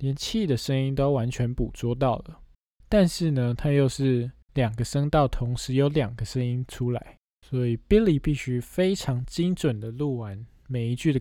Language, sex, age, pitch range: Chinese, male, 20-39, 120-155 Hz